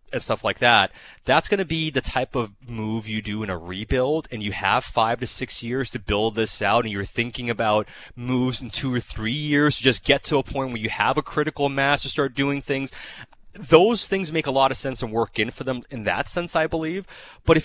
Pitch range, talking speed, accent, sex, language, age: 110-150 Hz, 250 wpm, American, male, English, 30-49